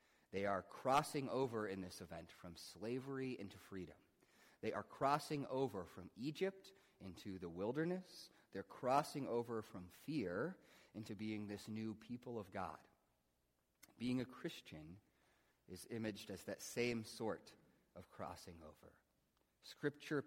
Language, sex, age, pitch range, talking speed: English, male, 30-49, 95-130 Hz, 135 wpm